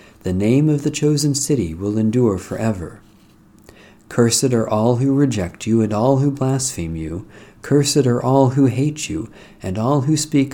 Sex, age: male, 50-69